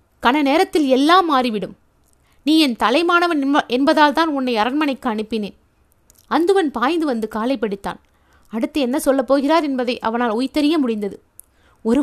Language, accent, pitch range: Tamil, native, 235-310 Hz